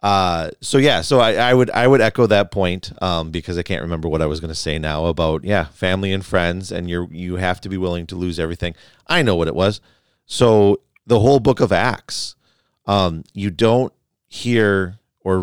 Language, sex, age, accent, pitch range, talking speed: English, male, 40-59, American, 80-95 Hz, 215 wpm